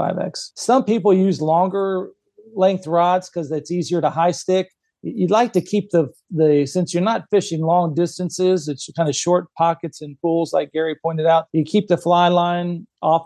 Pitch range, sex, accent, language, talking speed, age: 150-175 Hz, male, American, English, 190 wpm, 40-59